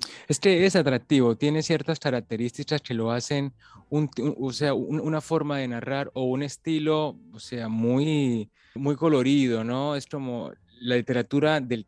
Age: 20-39